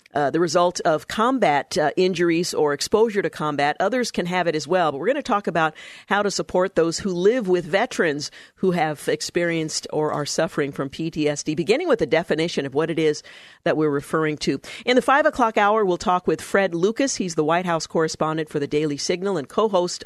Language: English